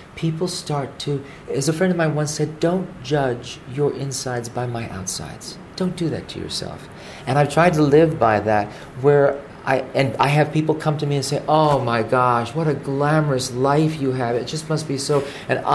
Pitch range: 115-160 Hz